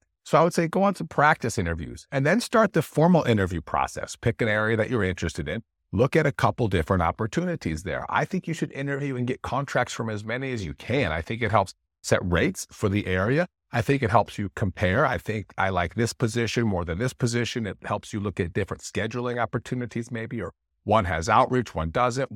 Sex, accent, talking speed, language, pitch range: male, American, 225 wpm, English, 90-130 Hz